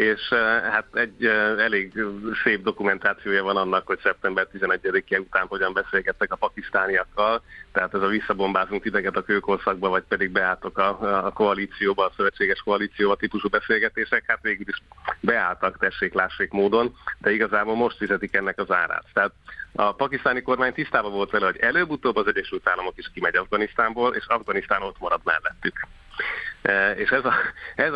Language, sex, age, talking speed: Hungarian, male, 30-49, 155 wpm